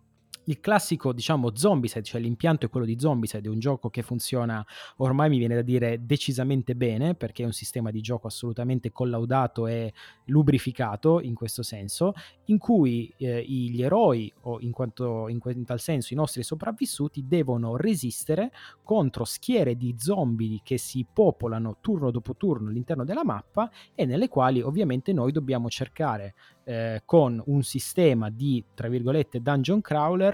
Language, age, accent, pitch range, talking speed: Italian, 20-39, native, 115-155 Hz, 165 wpm